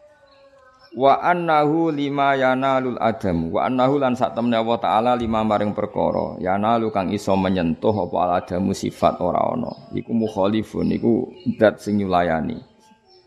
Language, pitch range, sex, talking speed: Indonesian, 90-120 Hz, male, 155 wpm